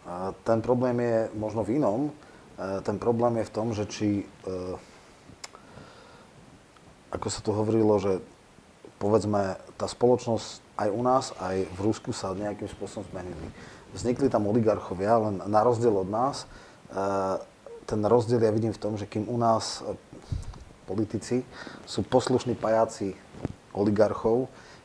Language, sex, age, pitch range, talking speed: Slovak, male, 30-49, 100-110 Hz, 130 wpm